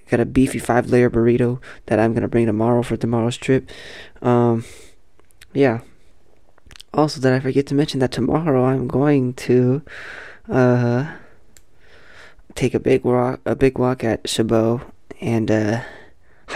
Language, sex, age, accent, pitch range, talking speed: English, male, 20-39, American, 115-130 Hz, 140 wpm